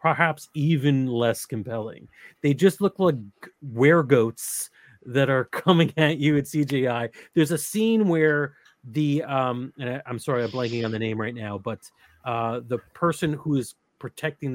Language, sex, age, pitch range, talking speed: English, male, 30-49, 120-165 Hz, 165 wpm